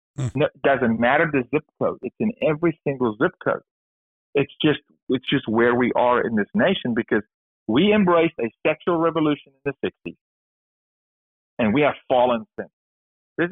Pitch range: 110-145 Hz